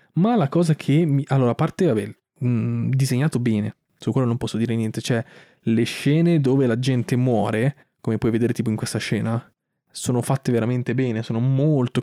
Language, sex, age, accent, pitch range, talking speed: Italian, male, 20-39, native, 120-150 Hz, 190 wpm